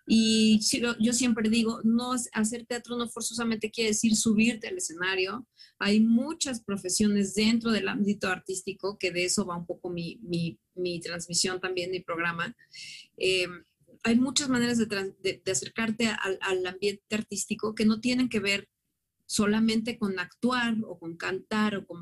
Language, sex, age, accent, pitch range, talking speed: Spanish, female, 30-49, Mexican, 205-255 Hz, 160 wpm